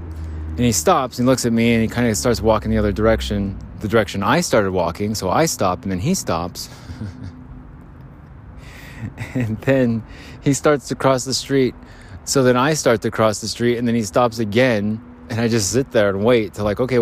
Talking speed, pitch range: 210 wpm, 90-120 Hz